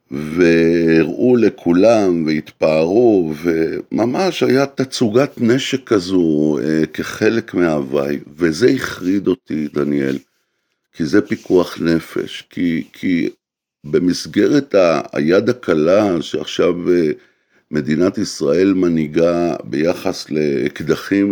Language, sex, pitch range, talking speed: Hebrew, male, 80-110 Hz, 90 wpm